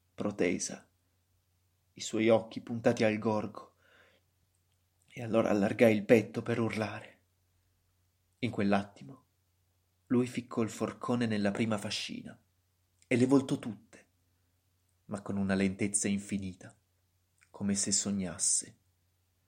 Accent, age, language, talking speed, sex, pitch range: native, 30-49, Italian, 110 wpm, male, 90-105 Hz